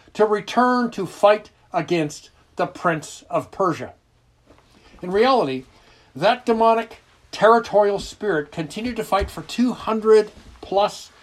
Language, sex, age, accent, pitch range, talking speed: English, male, 60-79, American, 135-210 Hz, 110 wpm